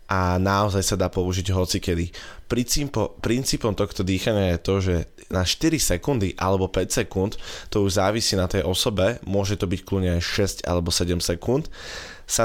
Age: 20-39